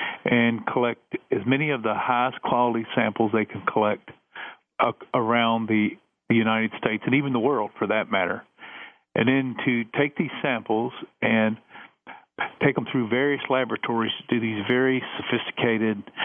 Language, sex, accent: English, male, American